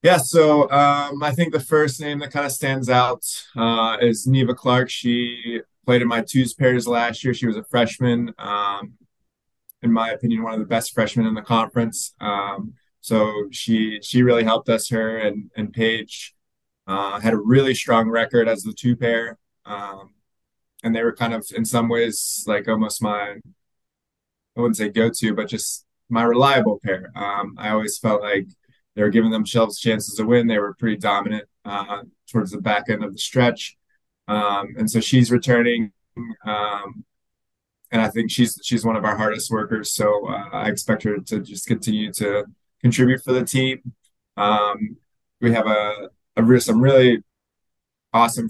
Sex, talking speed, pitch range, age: male, 180 wpm, 105-120 Hz, 20-39